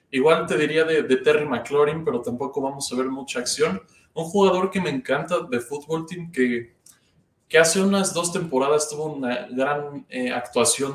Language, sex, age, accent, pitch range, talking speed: Spanish, male, 20-39, Mexican, 125-150 Hz, 180 wpm